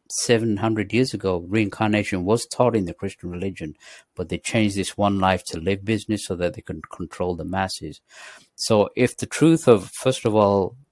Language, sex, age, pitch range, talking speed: English, male, 60-79, 95-120 Hz, 185 wpm